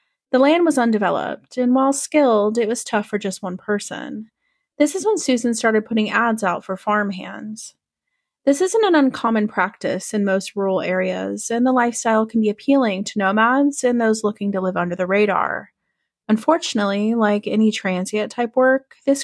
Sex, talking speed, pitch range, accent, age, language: female, 170 wpm, 195-250 Hz, American, 30-49, English